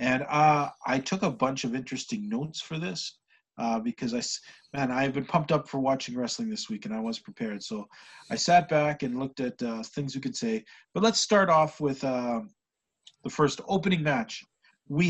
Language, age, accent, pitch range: English, 40-59, American, 120-170 Hz